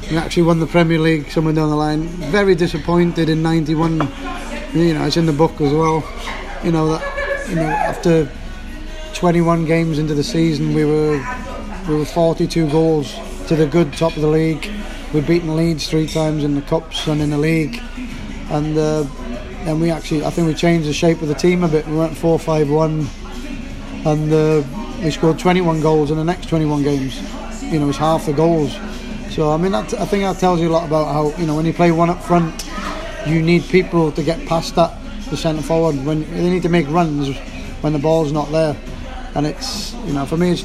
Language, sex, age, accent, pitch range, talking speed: English, male, 20-39, British, 150-170 Hz, 210 wpm